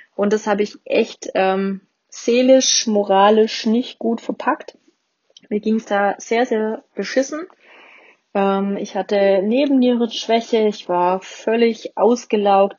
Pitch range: 195-235 Hz